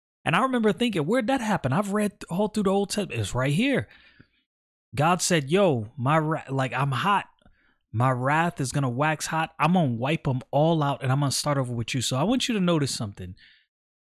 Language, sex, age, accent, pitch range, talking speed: English, male, 30-49, American, 125-160 Hz, 225 wpm